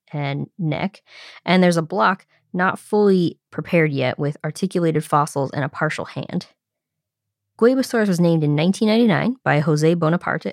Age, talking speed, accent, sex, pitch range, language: 20-39, 140 wpm, American, female, 155-190 Hz, English